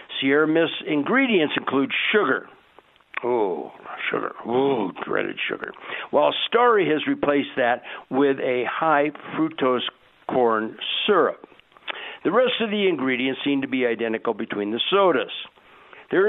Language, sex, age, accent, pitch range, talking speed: English, male, 60-79, American, 130-185 Hz, 120 wpm